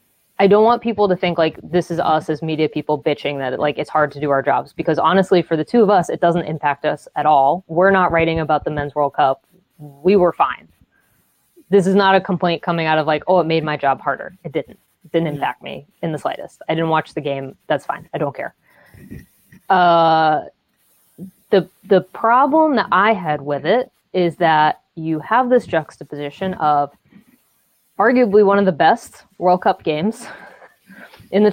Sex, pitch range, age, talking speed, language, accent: female, 155-195 Hz, 20-39, 200 wpm, English, American